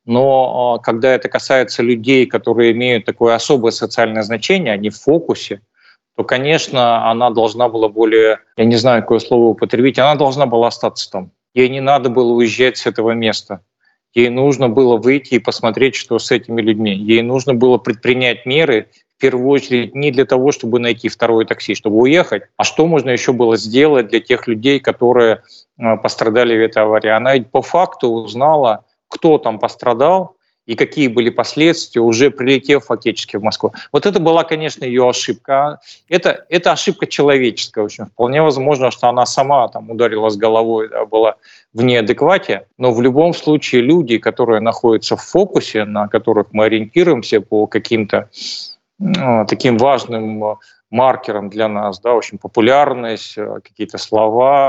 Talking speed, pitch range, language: 165 wpm, 115-135 Hz, Russian